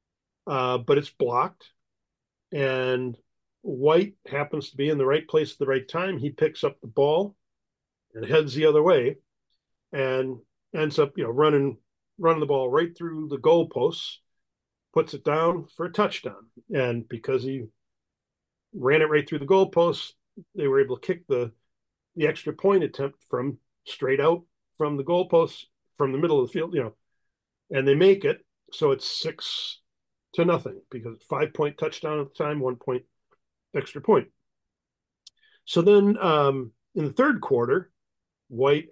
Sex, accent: male, American